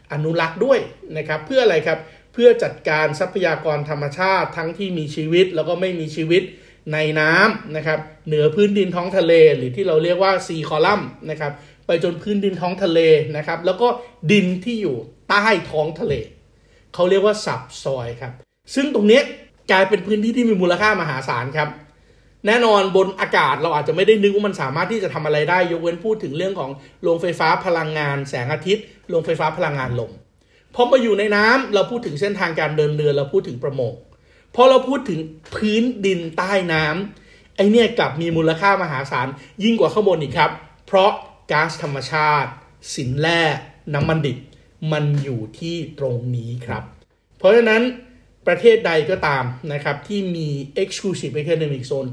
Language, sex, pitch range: Thai, male, 150-200 Hz